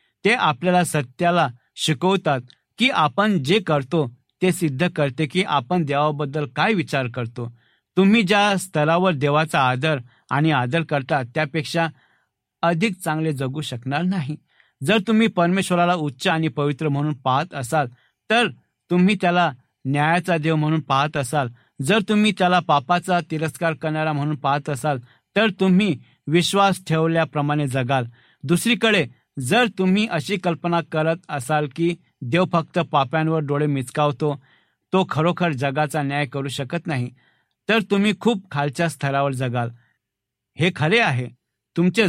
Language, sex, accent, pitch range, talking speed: Marathi, male, native, 140-175 Hz, 130 wpm